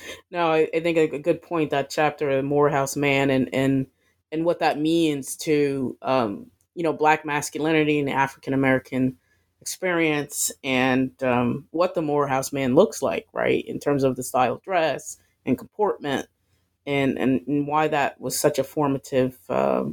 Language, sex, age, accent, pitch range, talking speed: English, female, 30-49, American, 130-165 Hz, 170 wpm